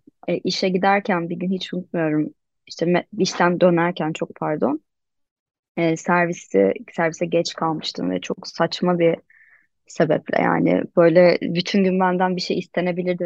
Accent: native